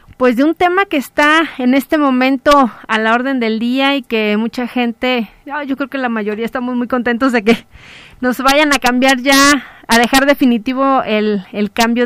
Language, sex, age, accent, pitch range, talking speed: Spanish, female, 30-49, Mexican, 230-275 Hz, 195 wpm